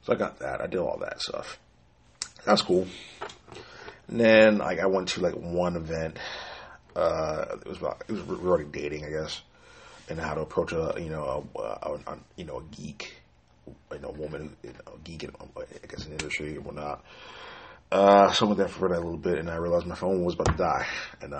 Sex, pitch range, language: male, 75-100 Hz, English